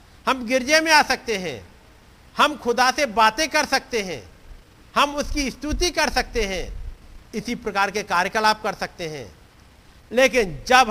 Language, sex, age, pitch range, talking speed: Hindi, male, 50-69, 155-245 Hz, 155 wpm